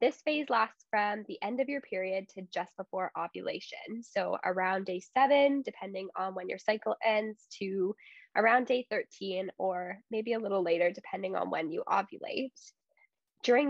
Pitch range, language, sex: 195-260 Hz, English, female